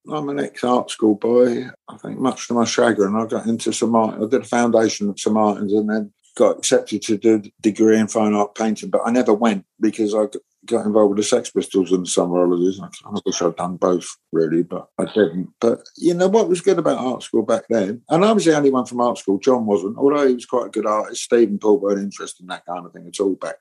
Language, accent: English, British